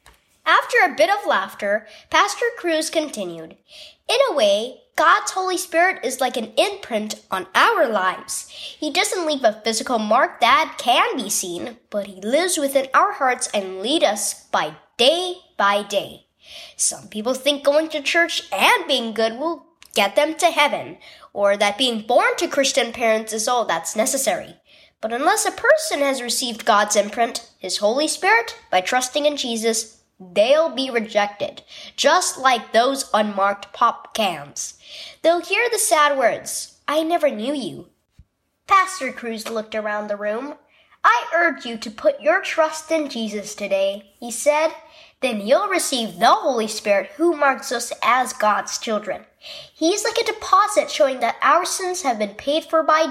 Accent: American